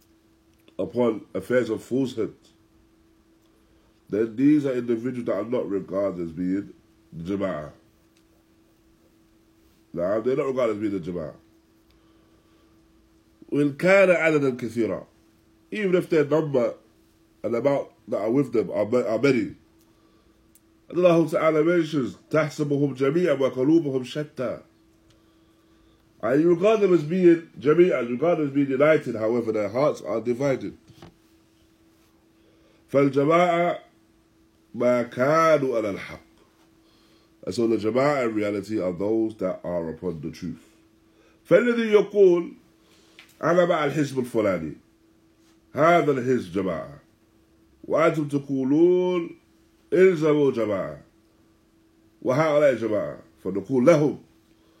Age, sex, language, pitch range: 20-39, male, English, 110-155 Hz